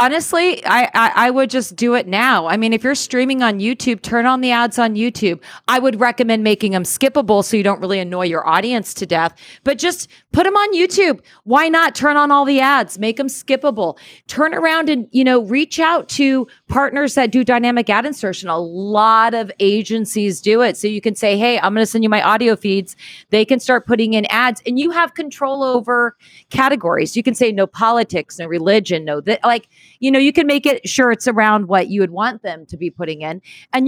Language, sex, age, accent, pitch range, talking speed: English, female, 40-59, American, 210-265 Hz, 225 wpm